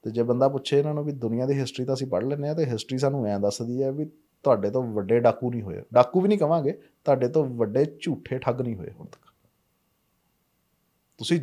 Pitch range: 110-135 Hz